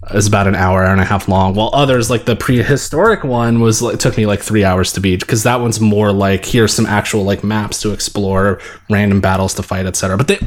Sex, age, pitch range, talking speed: male, 20-39, 105-155 Hz, 250 wpm